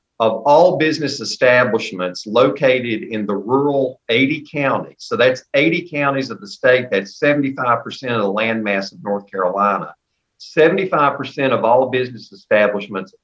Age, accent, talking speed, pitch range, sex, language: 50-69, American, 135 wpm, 110-155 Hz, male, English